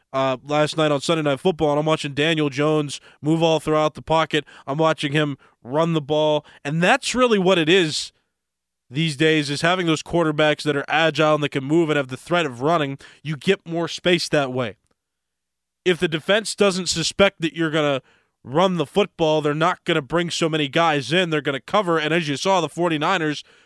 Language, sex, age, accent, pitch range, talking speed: English, male, 20-39, American, 145-180 Hz, 215 wpm